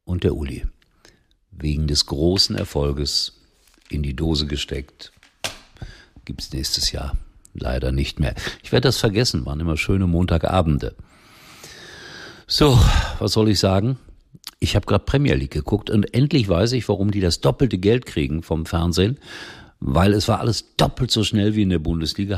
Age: 50-69